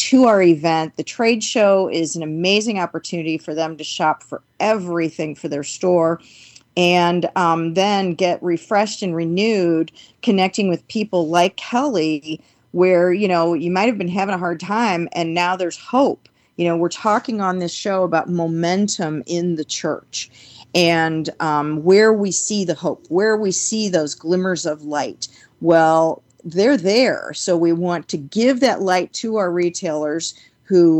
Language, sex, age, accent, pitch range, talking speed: English, female, 40-59, American, 160-190 Hz, 165 wpm